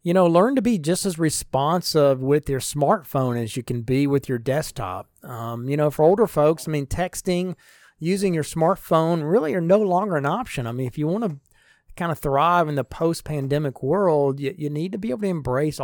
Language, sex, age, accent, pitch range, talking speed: English, male, 40-59, American, 135-165 Hz, 215 wpm